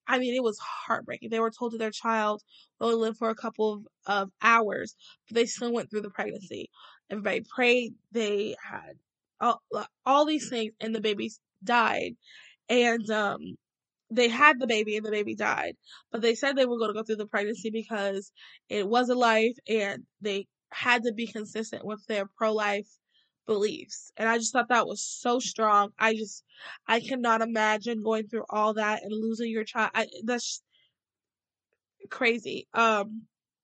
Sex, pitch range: female, 215-245 Hz